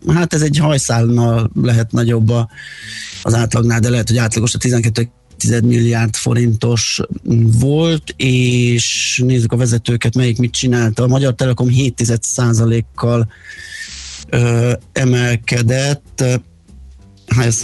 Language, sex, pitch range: Hungarian, male, 110-125 Hz